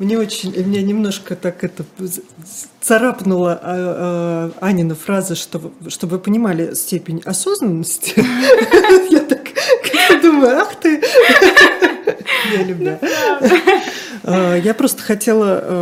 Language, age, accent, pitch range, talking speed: Russian, 30-49, native, 180-235 Hz, 100 wpm